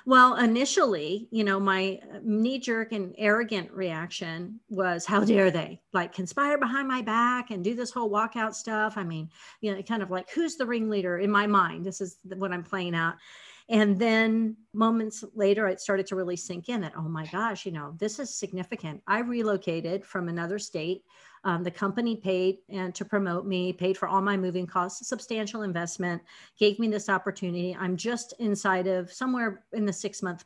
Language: English